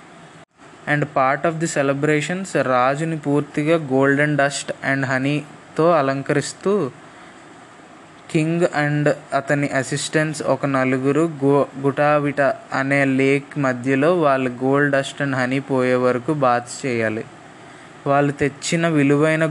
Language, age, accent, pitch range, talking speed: Telugu, 20-39, native, 135-150 Hz, 110 wpm